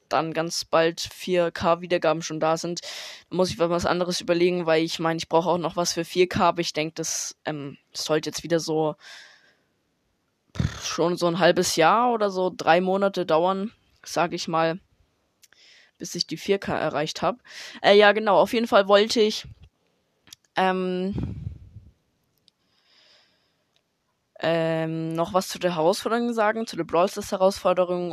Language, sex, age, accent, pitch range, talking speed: German, female, 20-39, German, 160-190 Hz, 150 wpm